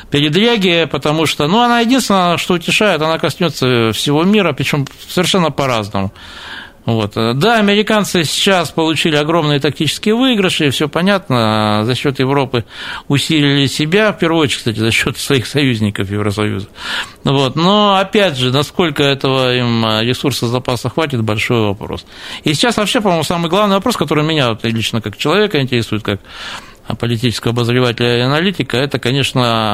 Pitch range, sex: 115-170 Hz, male